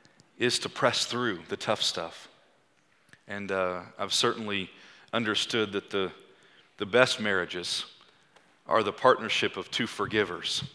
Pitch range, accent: 105-125 Hz, American